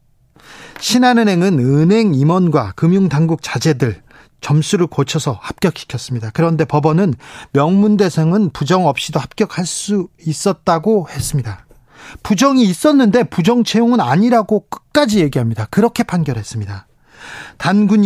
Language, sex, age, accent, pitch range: Korean, male, 40-59, native, 150-200 Hz